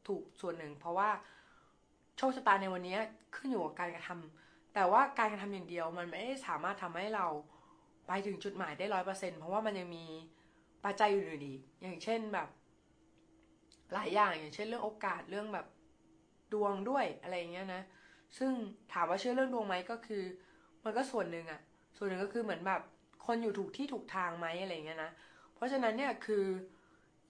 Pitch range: 175-225 Hz